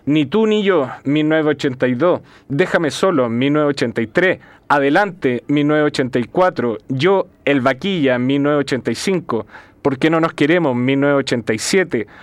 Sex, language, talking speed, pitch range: male, Spanish, 100 wpm, 135-180 Hz